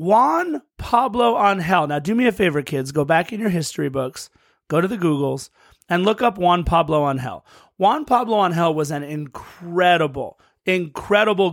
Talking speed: 180 wpm